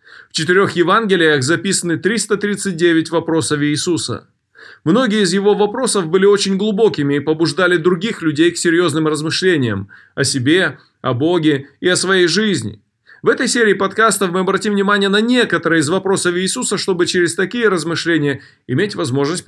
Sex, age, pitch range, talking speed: male, 20-39, 150-200 Hz, 145 wpm